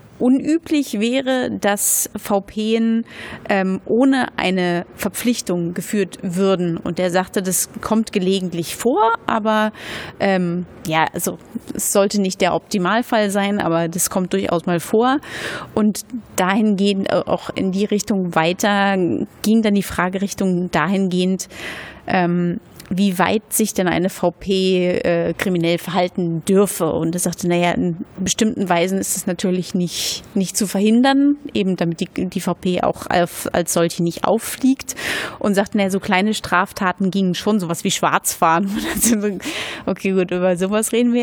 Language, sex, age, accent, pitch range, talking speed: German, female, 30-49, German, 180-215 Hz, 145 wpm